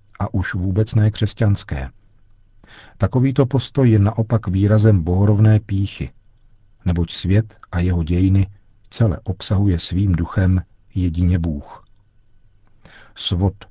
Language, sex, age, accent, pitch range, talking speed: Czech, male, 50-69, native, 90-105 Hz, 105 wpm